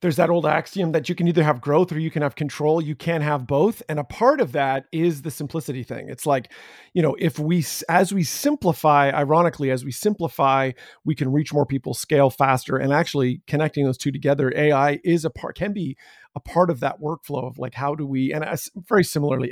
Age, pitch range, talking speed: 40-59, 140-175 Hz, 230 wpm